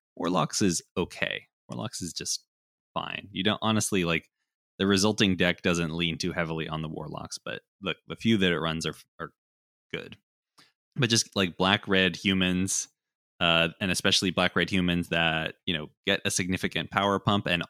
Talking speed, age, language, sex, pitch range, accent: 175 wpm, 20-39, English, male, 85-95 Hz, American